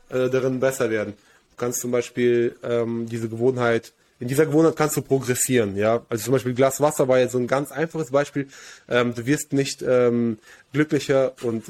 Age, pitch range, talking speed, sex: 20-39, 120-145 Hz, 195 wpm, male